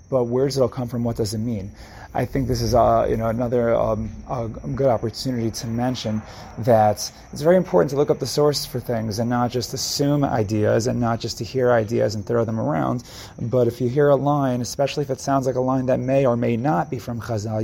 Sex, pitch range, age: male, 115-130 Hz, 30-49